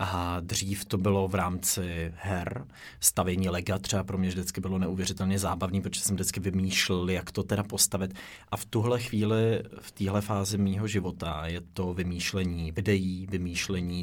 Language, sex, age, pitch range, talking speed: Czech, male, 30-49, 95-105 Hz, 165 wpm